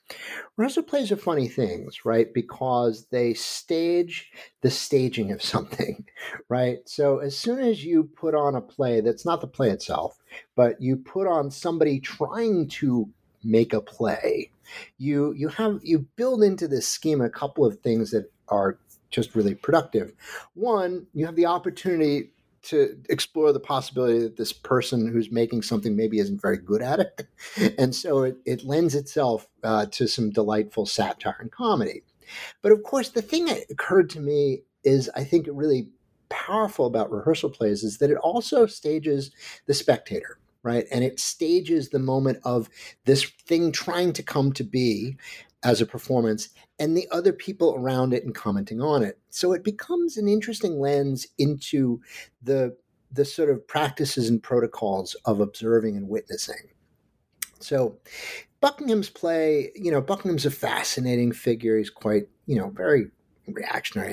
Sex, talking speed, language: male, 160 wpm, English